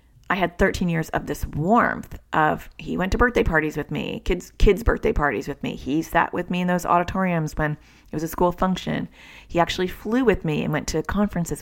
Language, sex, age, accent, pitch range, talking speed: English, female, 30-49, American, 150-190 Hz, 220 wpm